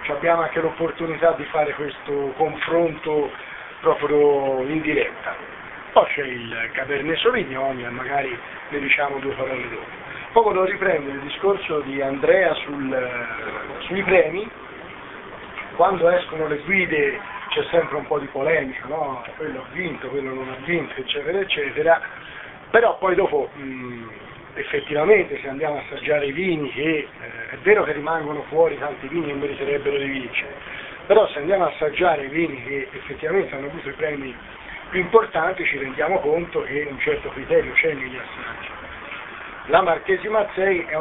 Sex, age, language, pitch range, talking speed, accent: male, 40-59, Italian, 135-185 Hz, 150 wpm, native